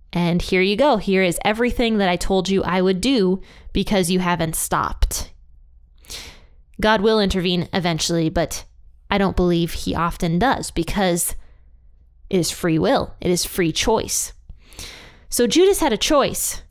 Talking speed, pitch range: 155 wpm, 160-195 Hz